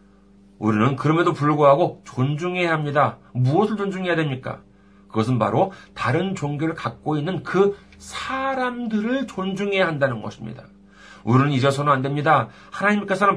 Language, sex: Korean, male